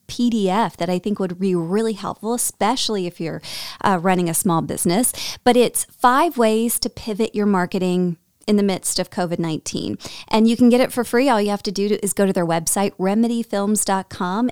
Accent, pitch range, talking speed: American, 185-245 Hz, 200 wpm